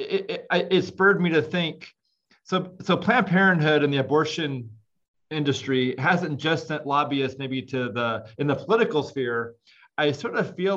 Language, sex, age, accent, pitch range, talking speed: English, male, 30-49, American, 125-165 Hz, 165 wpm